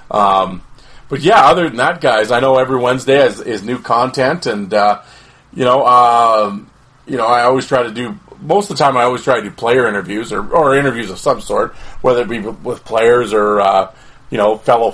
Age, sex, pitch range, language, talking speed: 30-49, male, 110-130 Hz, English, 215 wpm